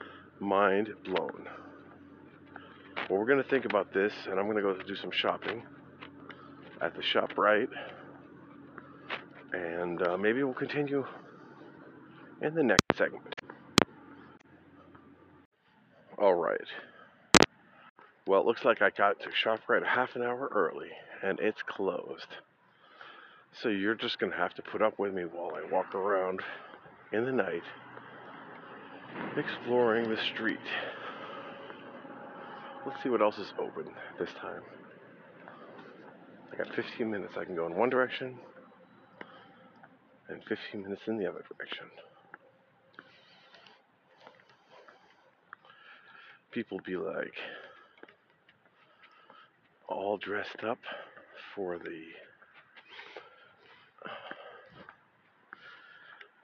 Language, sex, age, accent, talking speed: English, male, 40-59, American, 105 wpm